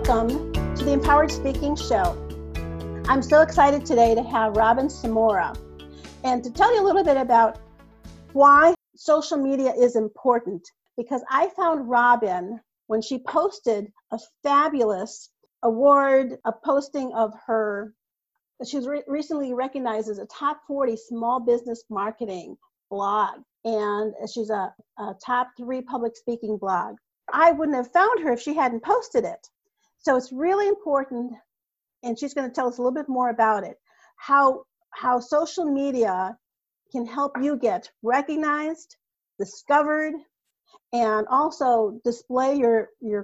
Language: English